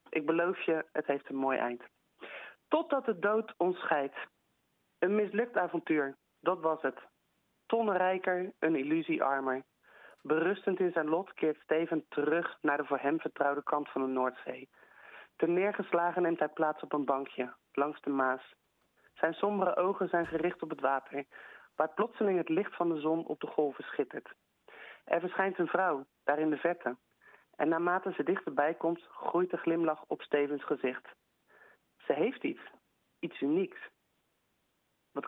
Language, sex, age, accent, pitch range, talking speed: Dutch, male, 40-59, Dutch, 140-180 Hz, 160 wpm